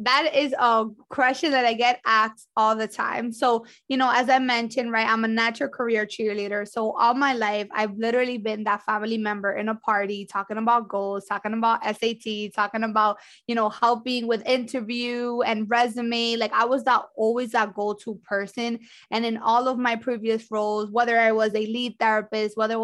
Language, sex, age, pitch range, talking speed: English, female, 20-39, 215-235 Hz, 195 wpm